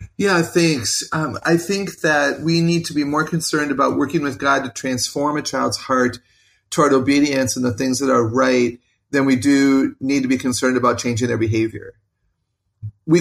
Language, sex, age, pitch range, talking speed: English, male, 40-59, 120-145 Hz, 185 wpm